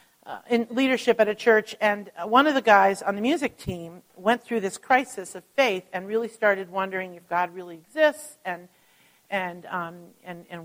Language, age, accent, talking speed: English, 50-69, American, 190 wpm